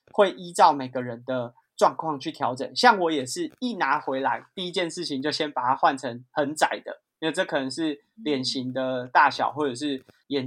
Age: 30-49